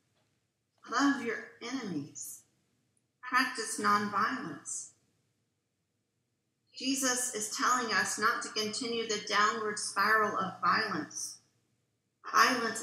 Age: 40-59